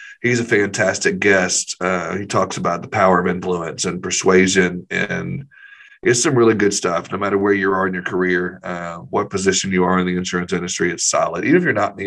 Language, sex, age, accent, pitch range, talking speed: English, male, 40-59, American, 90-115 Hz, 225 wpm